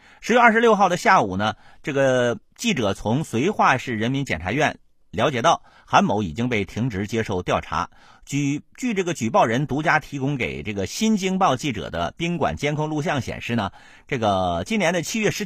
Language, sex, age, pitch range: Chinese, male, 50-69, 105-175 Hz